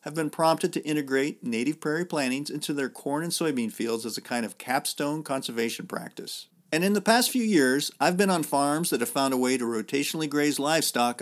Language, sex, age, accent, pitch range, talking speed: English, male, 50-69, American, 125-170 Hz, 215 wpm